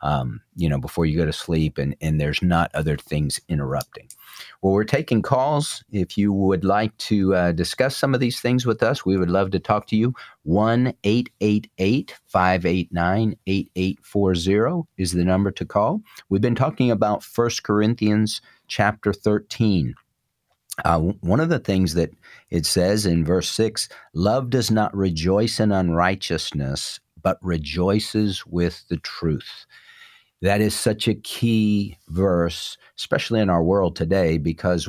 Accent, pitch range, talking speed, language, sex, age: American, 85-105 Hz, 150 wpm, English, male, 50-69